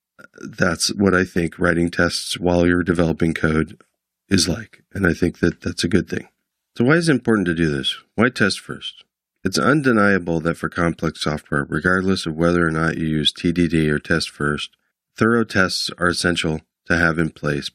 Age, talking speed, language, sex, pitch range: 40-59, 190 wpm, English, male, 80-100 Hz